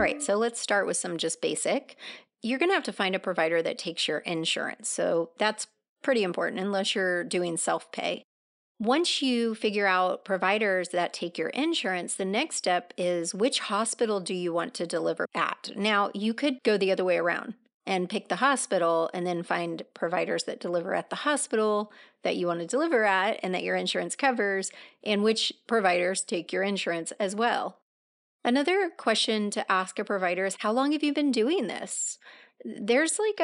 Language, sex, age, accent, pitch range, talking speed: English, female, 30-49, American, 190-245 Hz, 190 wpm